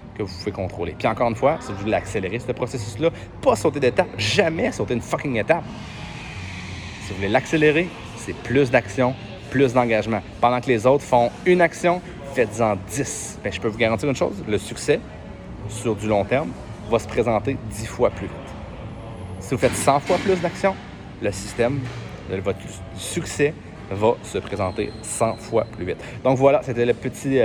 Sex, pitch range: male, 110-140 Hz